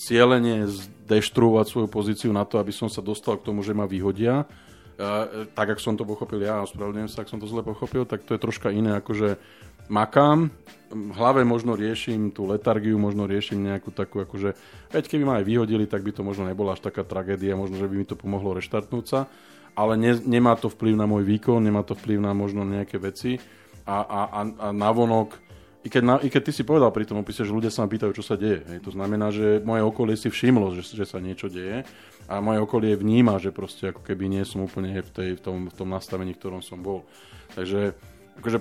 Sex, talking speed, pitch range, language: male, 220 wpm, 100-115 Hz, Slovak